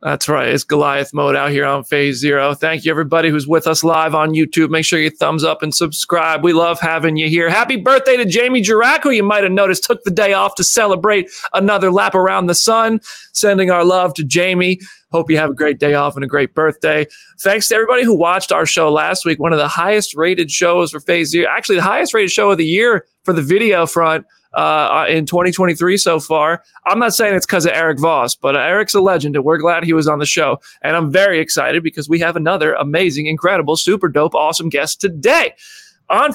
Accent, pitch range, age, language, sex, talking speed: American, 150-200 Hz, 30-49, English, male, 230 wpm